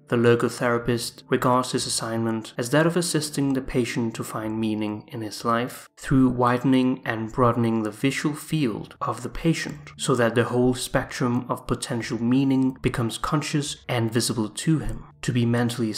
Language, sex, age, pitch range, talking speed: English, male, 30-49, 115-140 Hz, 165 wpm